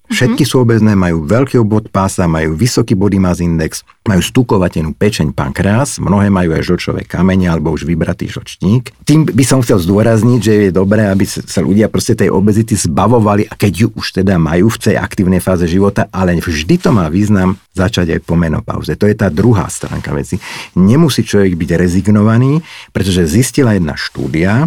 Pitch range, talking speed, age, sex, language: 95-120 Hz, 180 wpm, 50-69, male, Slovak